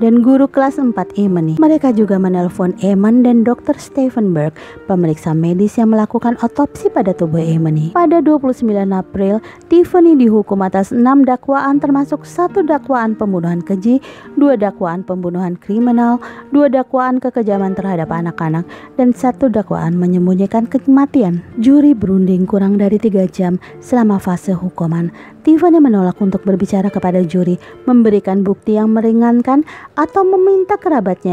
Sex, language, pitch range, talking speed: female, Indonesian, 185-270 Hz, 130 wpm